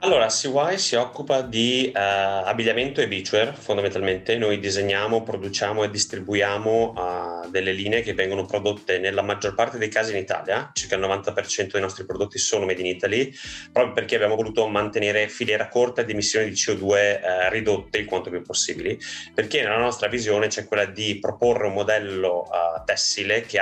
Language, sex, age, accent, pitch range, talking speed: Italian, male, 30-49, native, 95-115 Hz, 175 wpm